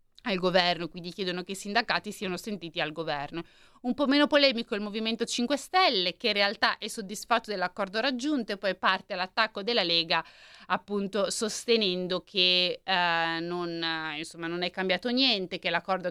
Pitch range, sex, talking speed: 180-230 Hz, female, 160 wpm